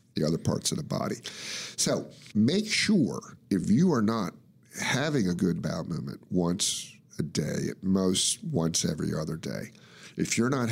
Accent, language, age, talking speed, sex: American, English, 50-69, 170 wpm, male